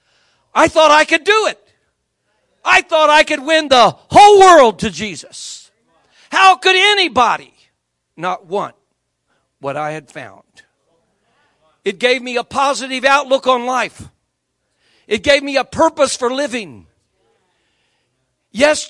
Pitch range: 245-325 Hz